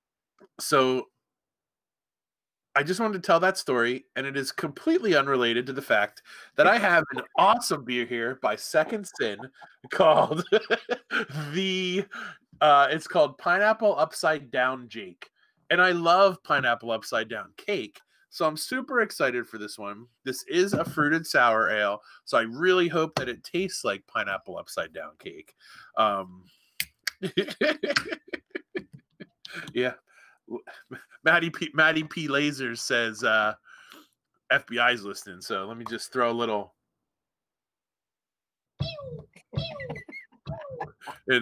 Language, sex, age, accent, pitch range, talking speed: English, male, 20-39, American, 125-185 Hz, 125 wpm